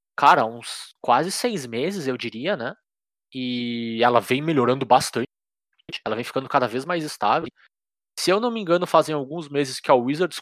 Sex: male